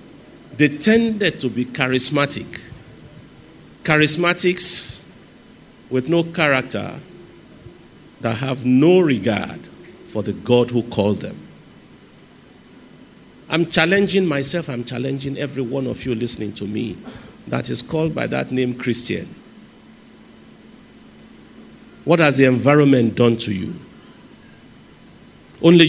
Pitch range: 115-165 Hz